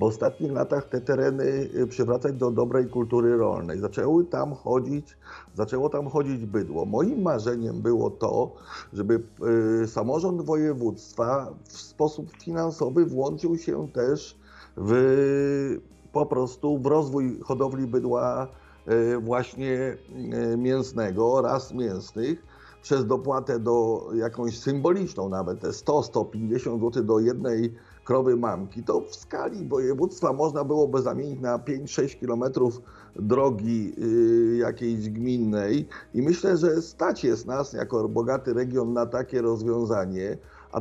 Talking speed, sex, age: 115 wpm, male, 50-69